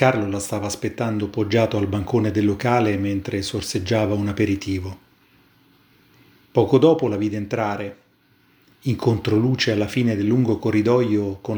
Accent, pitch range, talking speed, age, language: native, 105-125 Hz, 135 wpm, 30-49, Italian